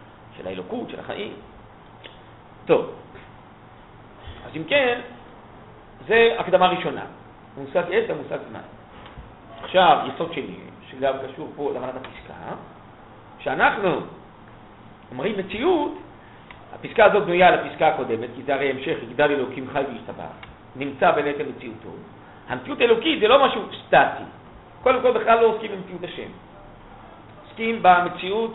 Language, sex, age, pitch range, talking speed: Hebrew, male, 50-69, 135-205 Hz, 120 wpm